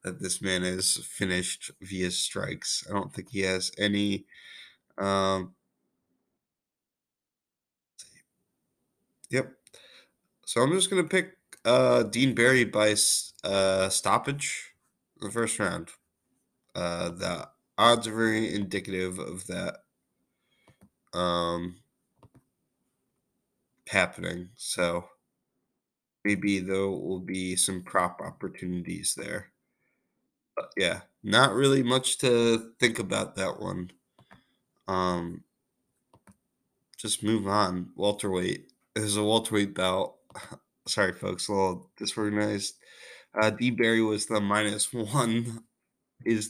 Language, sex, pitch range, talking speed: English, male, 95-115 Hz, 110 wpm